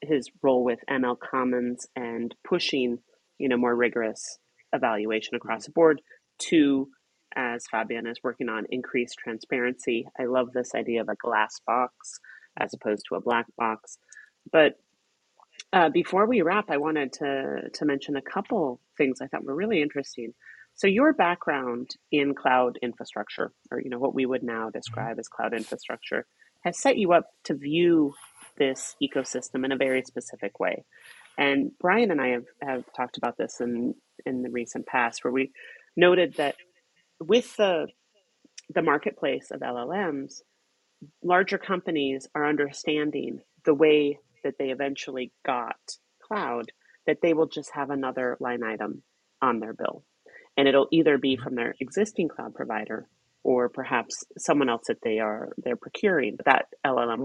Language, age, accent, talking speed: English, 30-49, American, 160 wpm